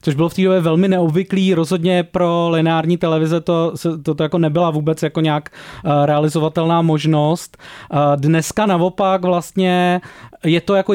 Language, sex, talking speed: Czech, male, 145 wpm